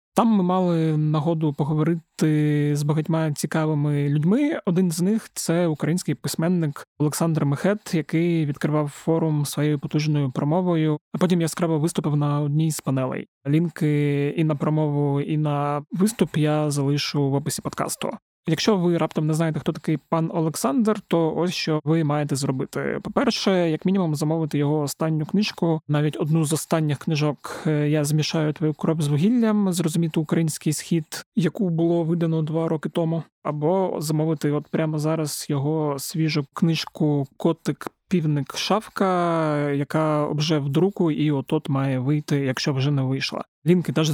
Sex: male